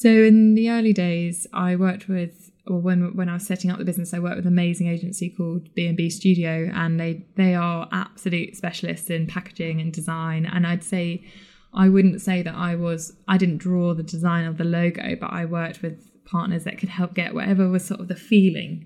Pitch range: 170-195 Hz